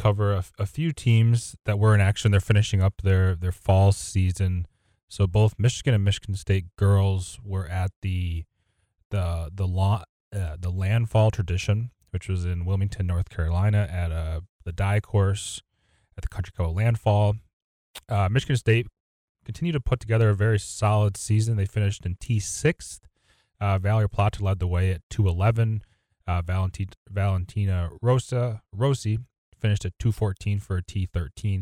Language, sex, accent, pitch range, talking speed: English, male, American, 95-110 Hz, 160 wpm